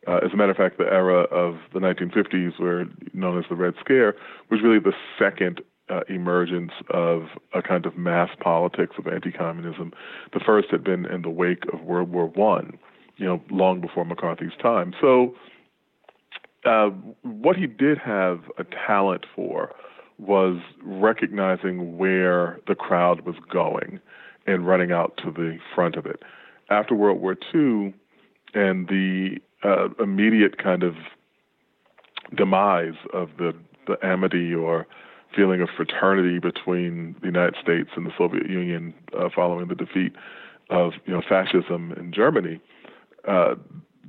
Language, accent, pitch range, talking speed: English, American, 85-95 Hz, 150 wpm